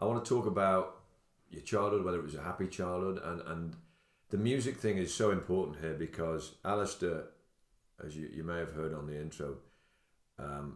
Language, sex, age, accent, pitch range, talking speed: English, male, 40-59, British, 80-105 Hz, 190 wpm